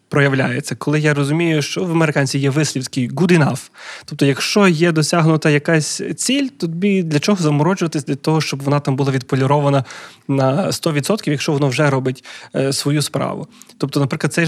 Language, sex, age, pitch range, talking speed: Ukrainian, male, 20-39, 140-175 Hz, 160 wpm